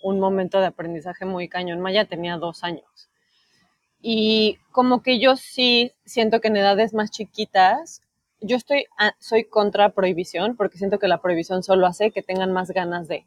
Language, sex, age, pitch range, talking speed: Spanish, female, 30-49, 185-235 Hz, 175 wpm